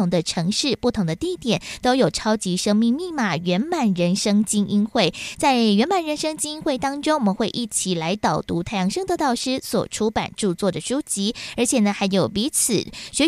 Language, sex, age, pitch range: Chinese, female, 20-39, 195-270 Hz